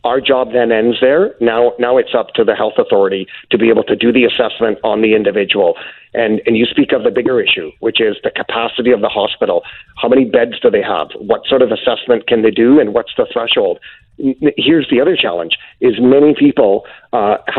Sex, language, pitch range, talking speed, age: male, English, 115-150 Hz, 215 wpm, 50-69